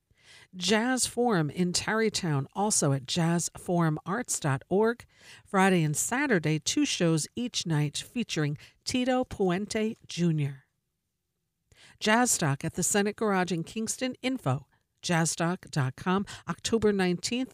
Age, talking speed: 50-69, 105 wpm